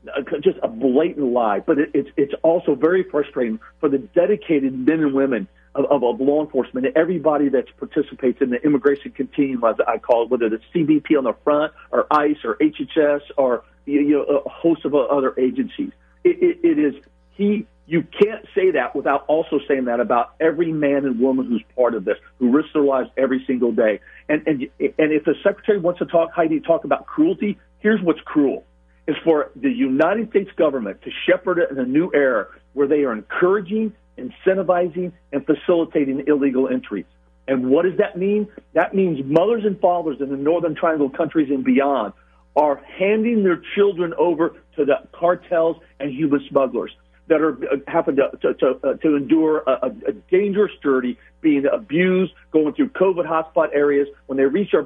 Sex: male